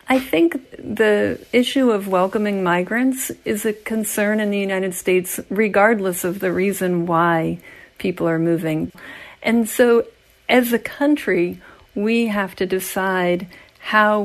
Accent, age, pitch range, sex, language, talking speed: American, 50-69, 180-235 Hz, female, English, 135 wpm